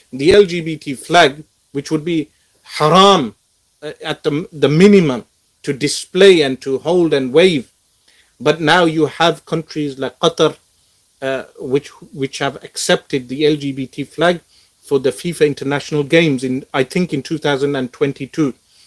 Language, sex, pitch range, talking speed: English, male, 140-175 Hz, 140 wpm